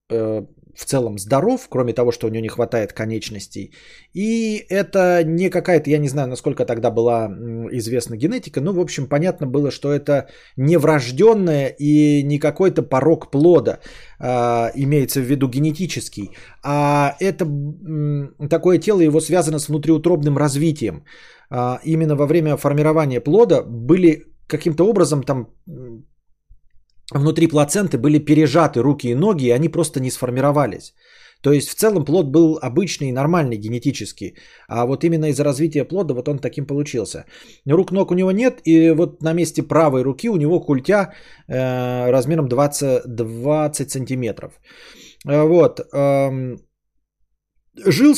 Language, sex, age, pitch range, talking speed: Bulgarian, male, 20-39, 130-165 Hz, 135 wpm